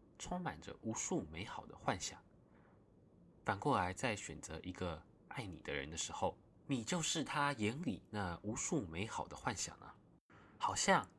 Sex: male